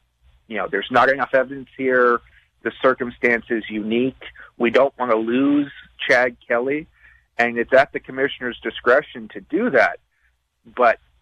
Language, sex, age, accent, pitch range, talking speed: English, male, 40-59, American, 115-135 Hz, 150 wpm